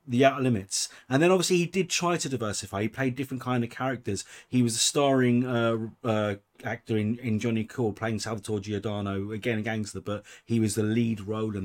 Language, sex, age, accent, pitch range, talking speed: English, male, 30-49, British, 110-130 Hz, 210 wpm